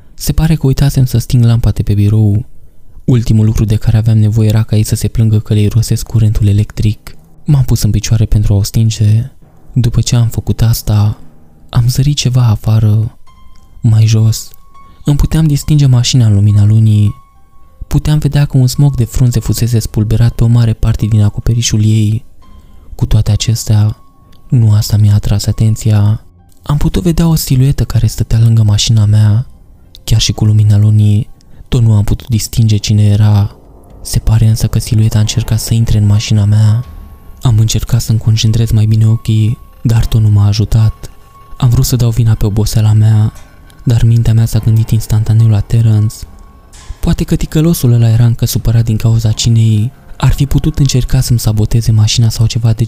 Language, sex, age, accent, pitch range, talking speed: Romanian, male, 20-39, native, 105-120 Hz, 180 wpm